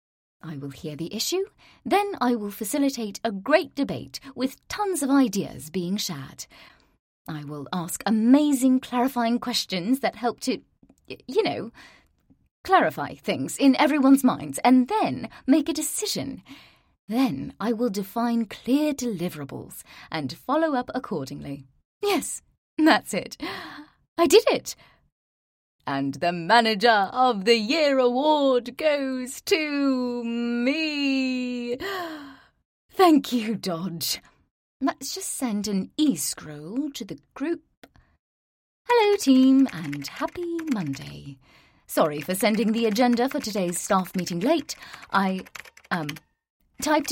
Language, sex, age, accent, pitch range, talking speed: English, female, 30-49, British, 195-295 Hz, 120 wpm